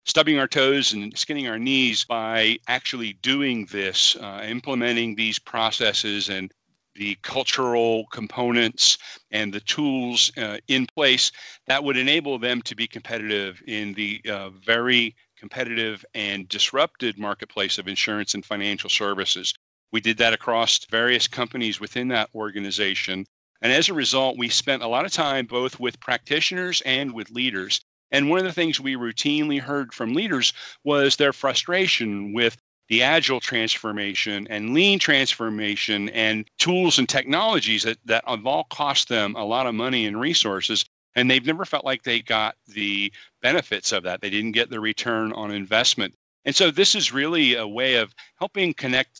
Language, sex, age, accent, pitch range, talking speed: English, male, 50-69, American, 105-135 Hz, 165 wpm